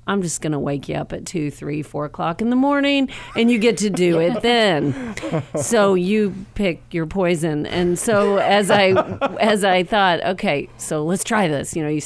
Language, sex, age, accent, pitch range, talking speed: English, female, 40-59, American, 145-180 Hz, 210 wpm